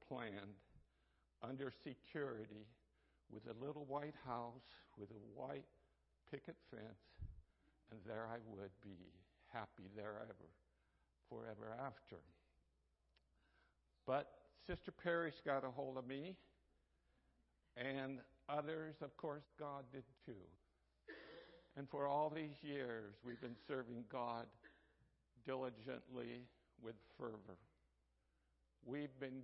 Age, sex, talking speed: 60-79, male, 105 wpm